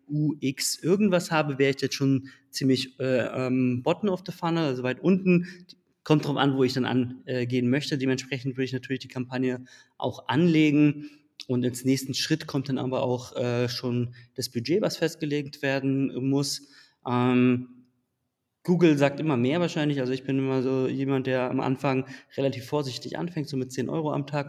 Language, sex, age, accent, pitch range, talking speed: German, male, 20-39, German, 125-150 Hz, 180 wpm